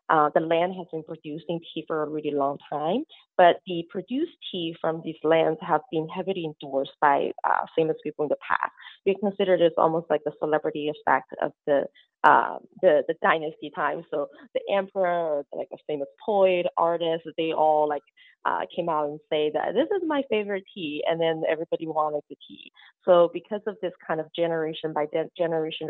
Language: English